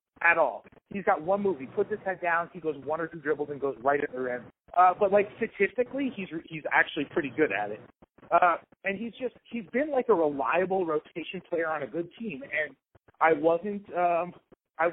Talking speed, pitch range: 205 wpm, 150-190 Hz